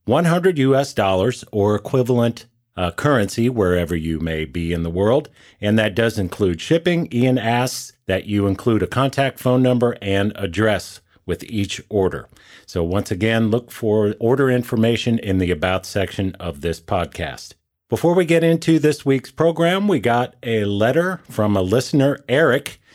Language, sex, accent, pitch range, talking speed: English, male, American, 95-125 Hz, 160 wpm